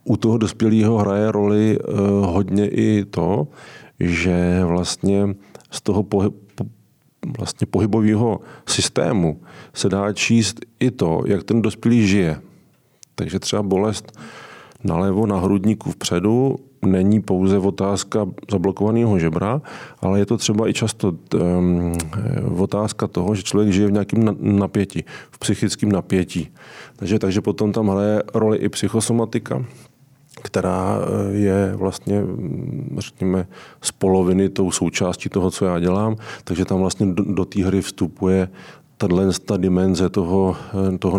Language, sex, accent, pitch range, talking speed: Czech, male, native, 95-105 Hz, 125 wpm